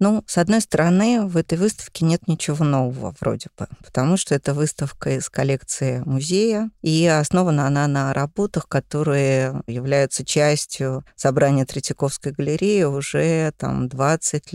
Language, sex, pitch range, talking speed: Russian, female, 140-180 Hz, 135 wpm